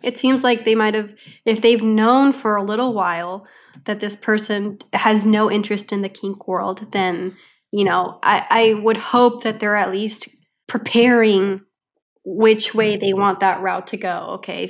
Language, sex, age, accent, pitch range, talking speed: English, female, 20-39, American, 195-225 Hz, 175 wpm